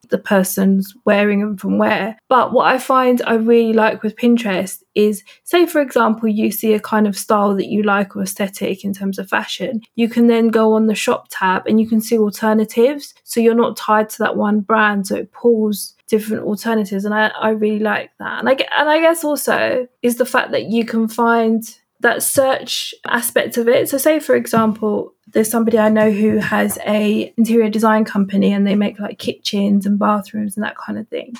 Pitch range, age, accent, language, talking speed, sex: 210-235 Hz, 20-39, British, English, 210 wpm, female